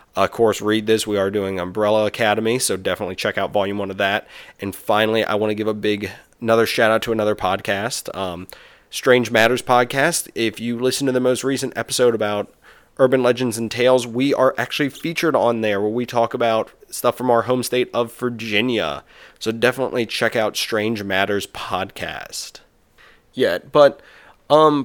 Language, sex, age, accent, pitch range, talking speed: English, male, 30-49, American, 110-130 Hz, 180 wpm